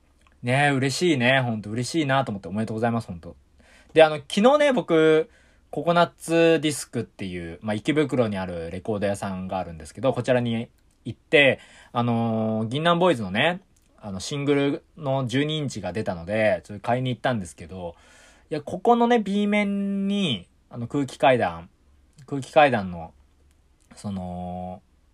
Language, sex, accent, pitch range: Japanese, male, native, 90-150 Hz